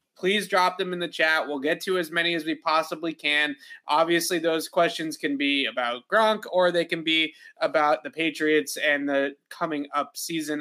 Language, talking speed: English, 190 wpm